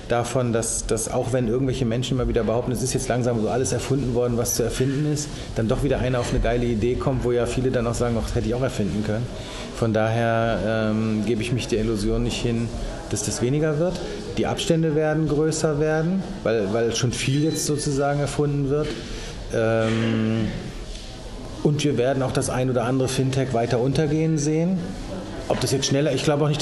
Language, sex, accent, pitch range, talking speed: German, male, German, 115-145 Hz, 205 wpm